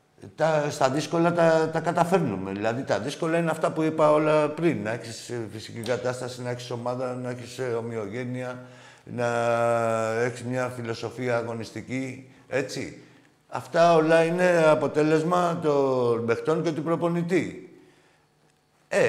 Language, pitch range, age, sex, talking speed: Greek, 110-155 Hz, 60-79, male, 125 wpm